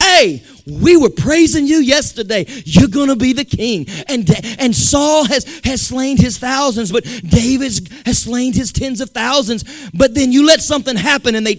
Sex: male